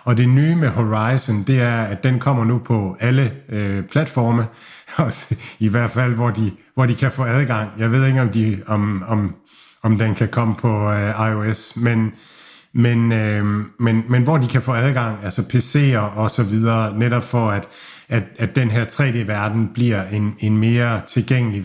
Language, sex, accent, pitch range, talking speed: Danish, male, native, 110-130 Hz, 185 wpm